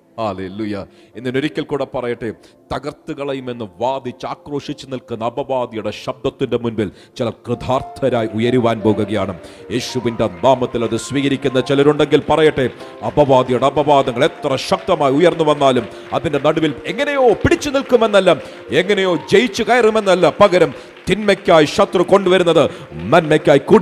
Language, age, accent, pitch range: Malayalam, 40-59, native, 125-160 Hz